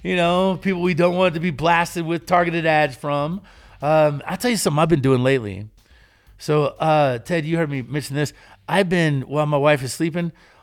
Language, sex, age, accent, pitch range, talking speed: English, male, 50-69, American, 150-190 Hz, 210 wpm